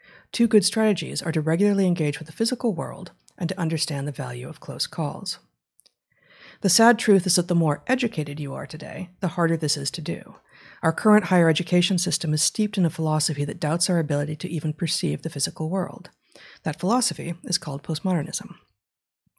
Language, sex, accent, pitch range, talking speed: English, female, American, 155-190 Hz, 190 wpm